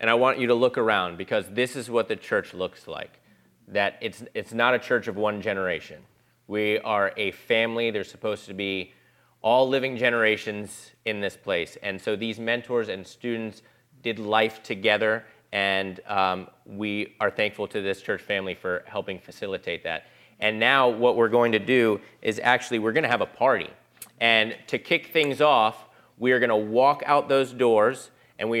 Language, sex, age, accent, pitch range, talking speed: English, male, 30-49, American, 110-135 Hz, 190 wpm